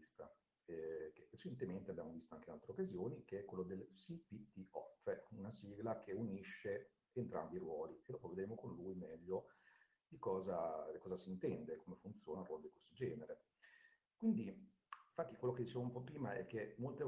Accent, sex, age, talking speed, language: native, male, 50-69, 180 wpm, Italian